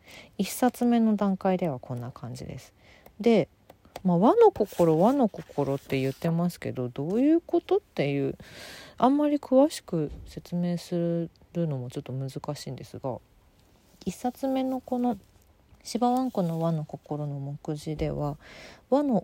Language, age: Japanese, 40-59